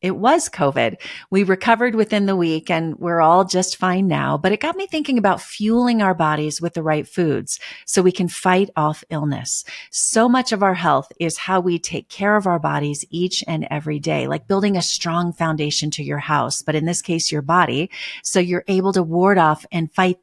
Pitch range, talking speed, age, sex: 155-195 Hz, 215 wpm, 40-59, female